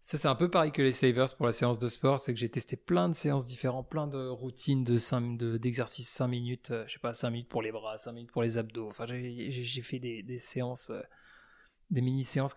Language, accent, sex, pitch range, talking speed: French, French, male, 115-135 Hz, 245 wpm